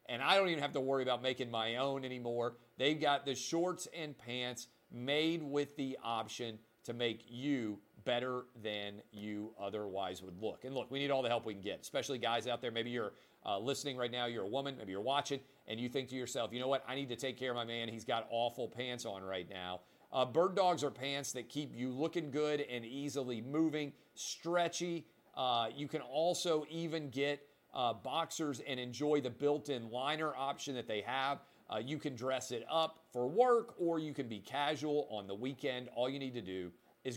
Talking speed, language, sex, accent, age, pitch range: 215 wpm, English, male, American, 40-59, 115-145 Hz